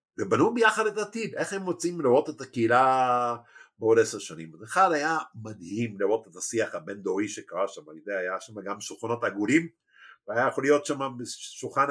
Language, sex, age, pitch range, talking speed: Hebrew, male, 50-69, 120-185 Hz, 165 wpm